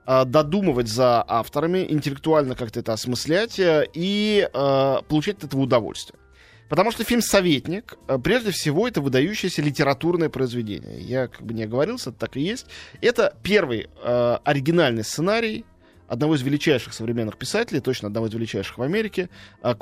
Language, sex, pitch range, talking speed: Russian, male, 115-165 Hz, 140 wpm